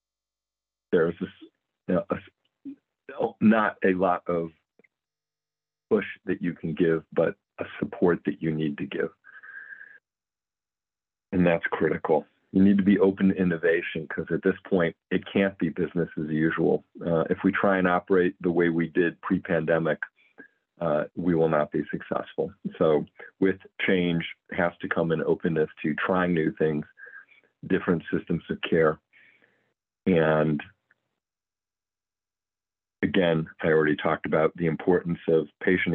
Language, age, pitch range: English, 40-59, 80-90 Hz